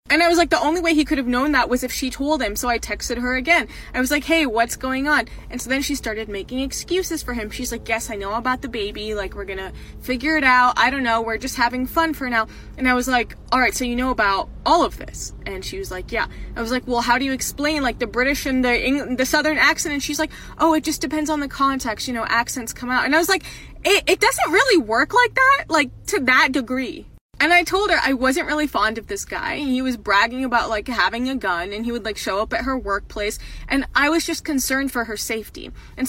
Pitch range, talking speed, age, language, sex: 225-300 Hz, 275 wpm, 20-39, Swedish, female